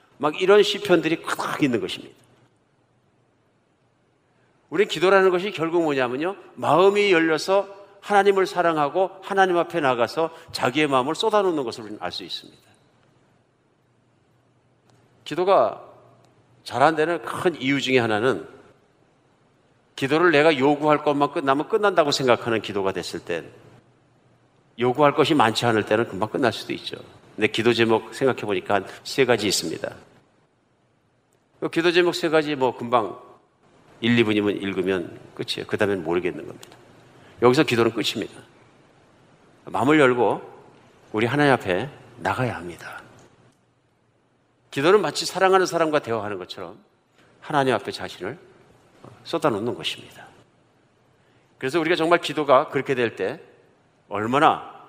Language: Korean